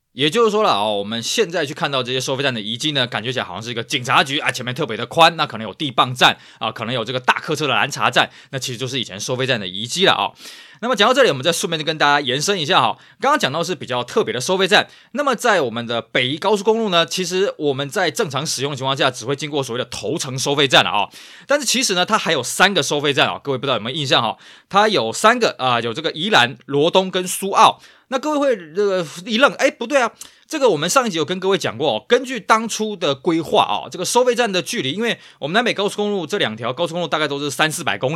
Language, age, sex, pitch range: Chinese, 20-39, male, 135-205 Hz